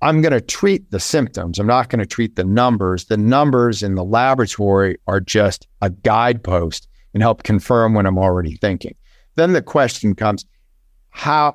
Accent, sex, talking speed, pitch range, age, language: American, male, 165 wpm, 100-125 Hz, 50-69, English